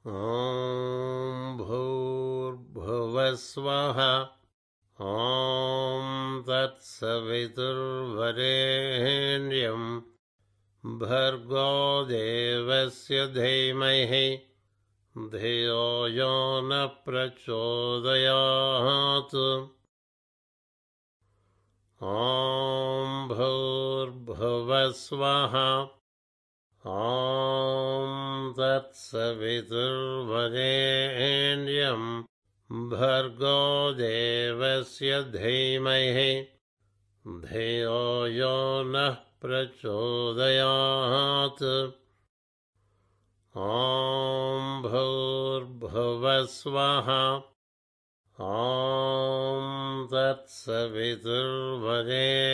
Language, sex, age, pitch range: Telugu, male, 60-79, 115-135 Hz